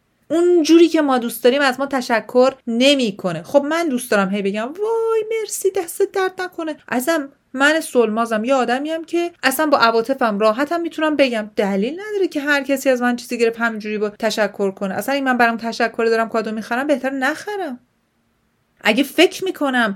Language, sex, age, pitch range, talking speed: Persian, female, 30-49, 200-280 Hz, 180 wpm